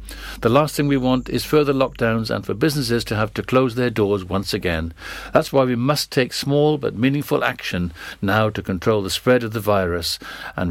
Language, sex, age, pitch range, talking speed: English, male, 60-79, 110-135 Hz, 205 wpm